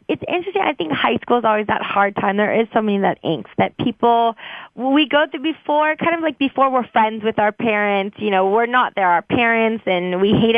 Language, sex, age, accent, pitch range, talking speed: English, female, 20-39, American, 210-255 Hz, 245 wpm